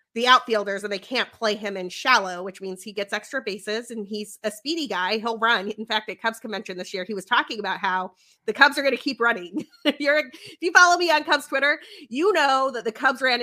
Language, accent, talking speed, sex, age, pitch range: English, American, 245 wpm, female, 30-49, 210-285 Hz